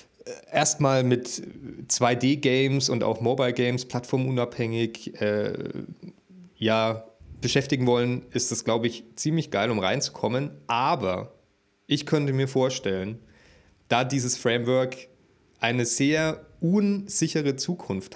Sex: male